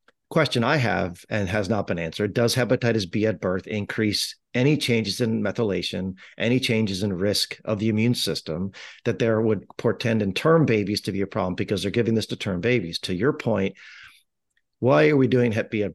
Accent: American